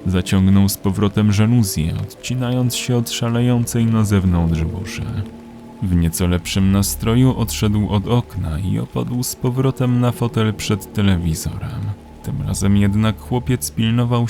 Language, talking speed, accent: Polish, 130 wpm, native